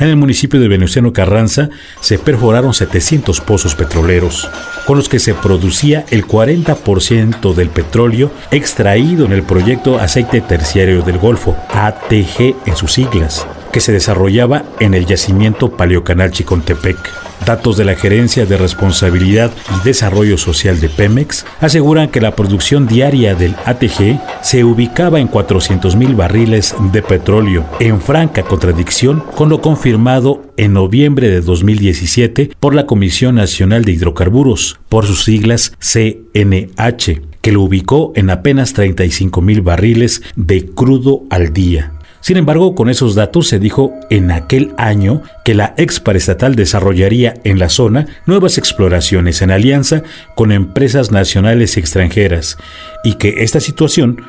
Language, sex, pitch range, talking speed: Spanish, male, 95-130 Hz, 140 wpm